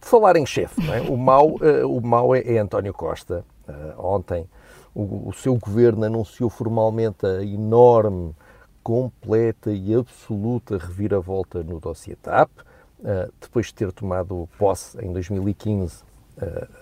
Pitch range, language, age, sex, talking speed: 100-125 Hz, Portuguese, 50-69, male, 130 wpm